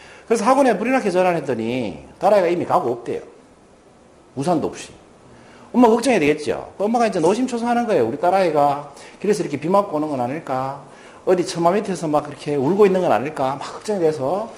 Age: 40-59